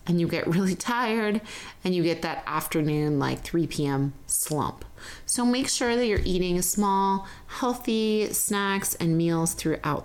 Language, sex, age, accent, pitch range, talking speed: English, female, 30-49, American, 165-215 Hz, 155 wpm